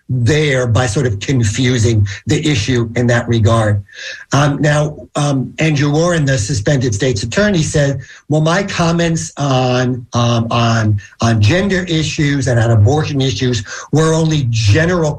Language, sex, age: English, male, 50-69